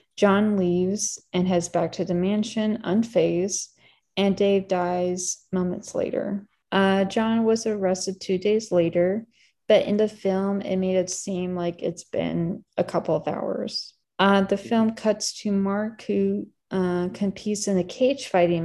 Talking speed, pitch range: 160 wpm, 180-210 Hz